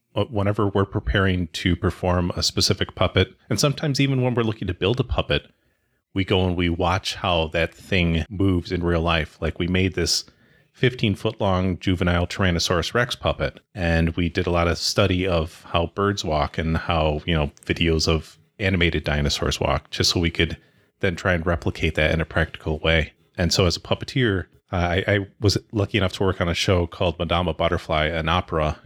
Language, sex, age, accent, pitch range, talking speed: English, male, 30-49, American, 80-95 Hz, 195 wpm